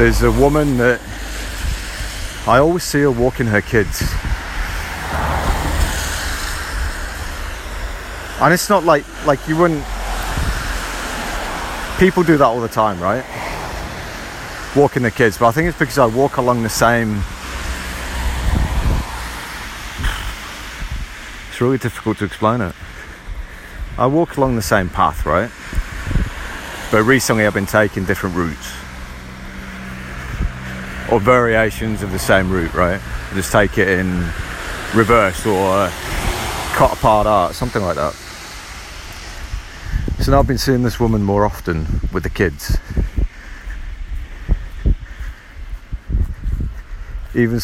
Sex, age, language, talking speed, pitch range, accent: male, 30-49, English, 115 wpm, 75-115 Hz, British